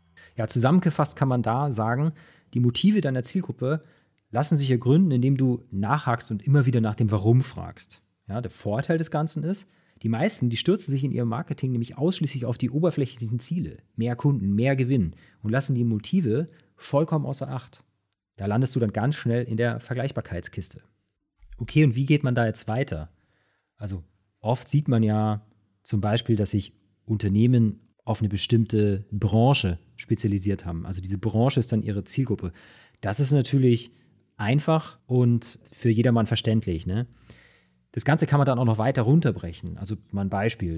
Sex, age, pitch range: male, 40-59, 105-135 Hz